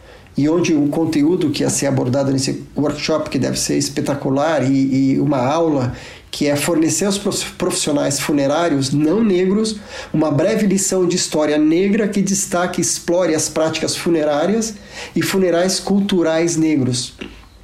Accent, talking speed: Brazilian, 145 wpm